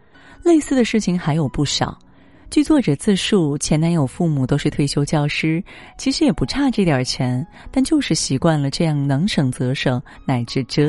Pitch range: 135-195 Hz